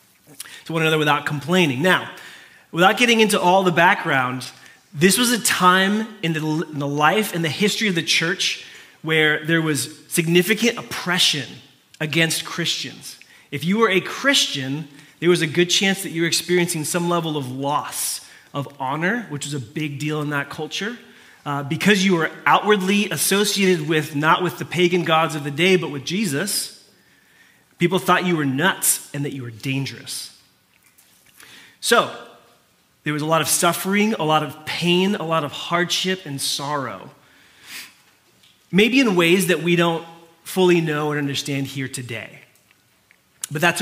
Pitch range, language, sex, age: 145-180 Hz, English, male, 30-49